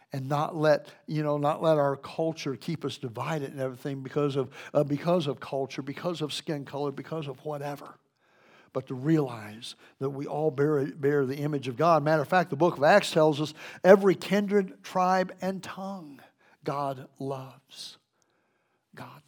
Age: 60-79